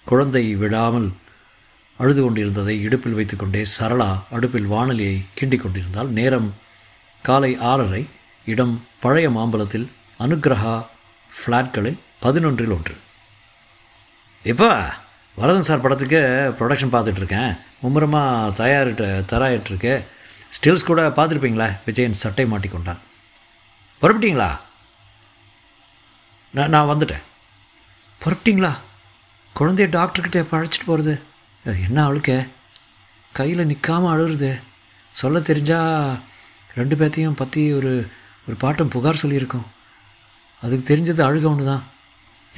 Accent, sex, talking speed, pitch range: native, male, 90 wpm, 105-140 Hz